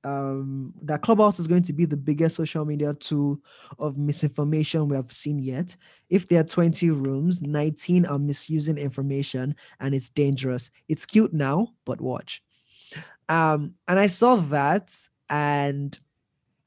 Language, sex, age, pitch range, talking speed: English, male, 20-39, 140-170 Hz, 150 wpm